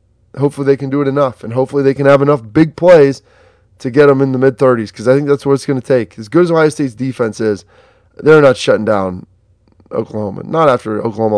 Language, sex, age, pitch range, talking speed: English, male, 20-39, 110-140 Hz, 235 wpm